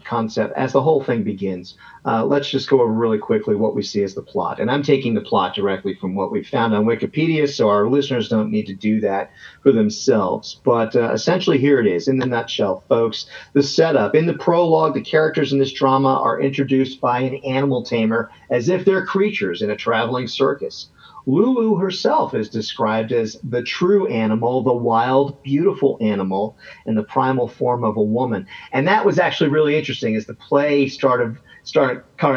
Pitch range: 115-155 Hz